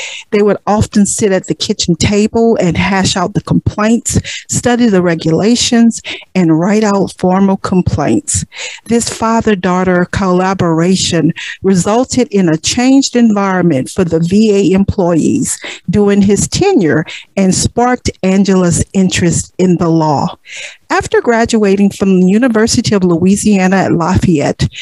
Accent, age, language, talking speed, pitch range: American, 50-69, English, 125 wpm, 180-230 Hz